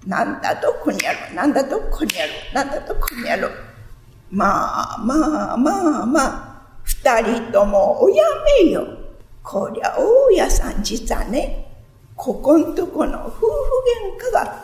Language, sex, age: Japanese, female, 50-69